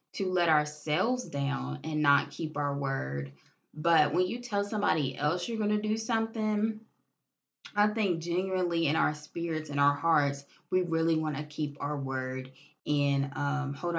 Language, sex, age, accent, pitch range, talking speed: English, female, 20-39, American, 145-185 Hz, 165 wpm